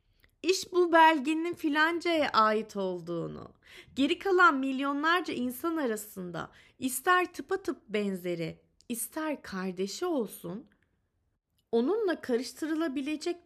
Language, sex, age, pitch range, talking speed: Turkish, female, 30-49, 215-310 Hz, 90 wpm